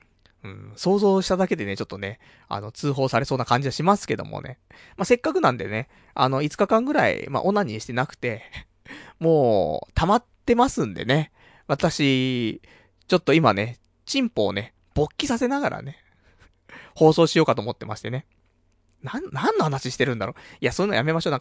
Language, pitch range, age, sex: Japanese, 105-170 Hz, 20-39, male